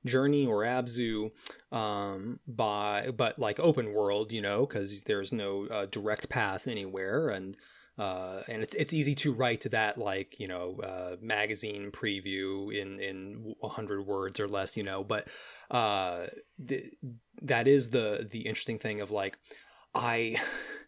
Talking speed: 160 wpm